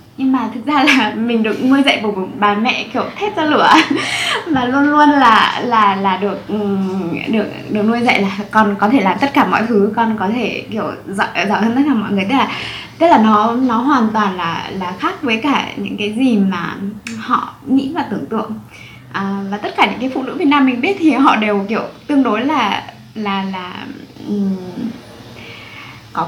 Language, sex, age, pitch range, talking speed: Vietnamese, female, 20-39, 190-255 Hz, 210 wpm